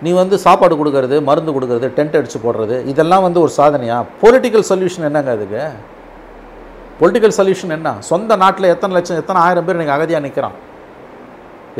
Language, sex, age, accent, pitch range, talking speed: Tamil, male, 50-69, native, 160-195 Hz, 155 wpm